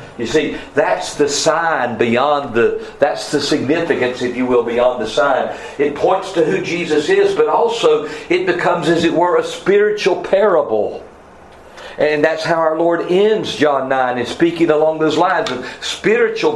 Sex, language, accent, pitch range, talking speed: male, English, American, 125-175 Hz, 170 wpm